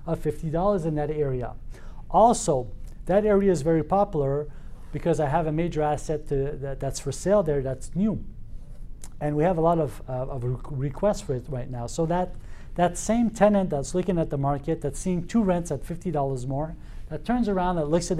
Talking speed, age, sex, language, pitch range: 200 wpm, 40-59, male, French, 140-175 Hz